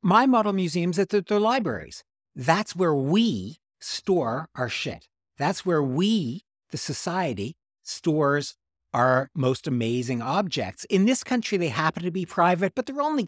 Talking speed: 155 wpm